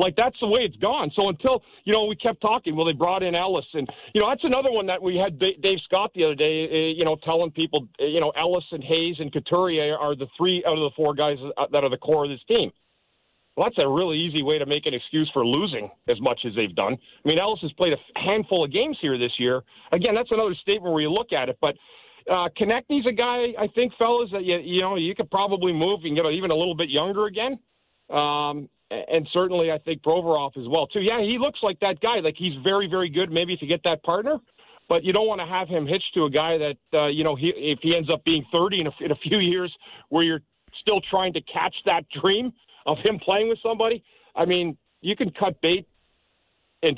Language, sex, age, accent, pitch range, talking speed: English, male, 40-59, American, 155-205 Hz, 245 wpm